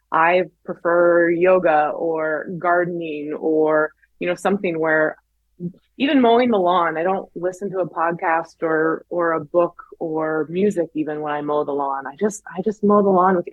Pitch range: 170-205 Hz